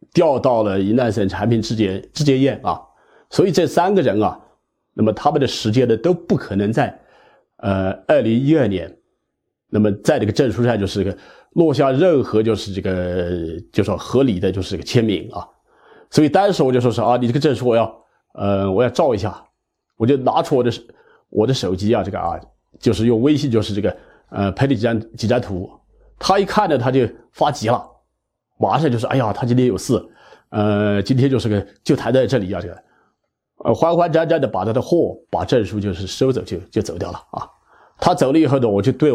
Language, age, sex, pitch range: Chinese, 40-59, male, 100-135 Hz